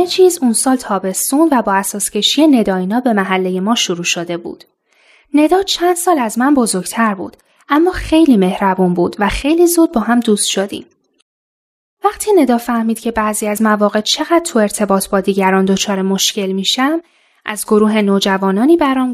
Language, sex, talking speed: Persian, female, 165 wpm